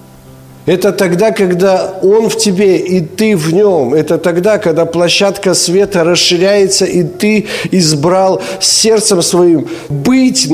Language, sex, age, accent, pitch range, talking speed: Ukrainian, male, 50-69, native, 120-170 Hz, 125 wpm